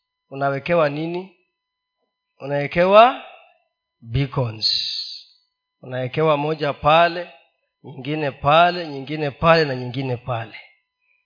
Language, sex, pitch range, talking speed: Swahili, male, 175-270 Hz, 75 wpm